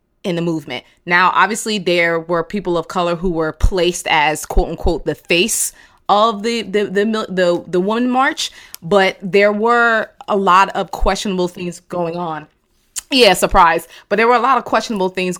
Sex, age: female, 20-39